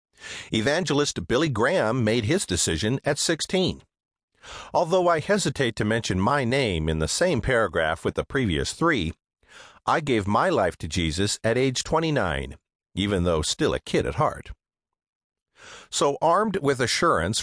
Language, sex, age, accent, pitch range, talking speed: English, male, 50-69, American, 90-145 Hz, 150 wpm